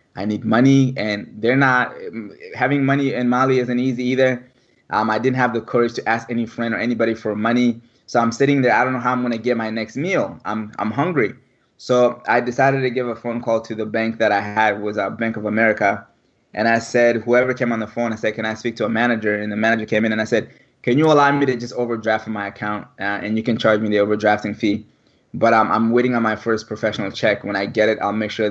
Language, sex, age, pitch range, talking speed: English, male, 20-39, 105-125 Hz, 255 wpm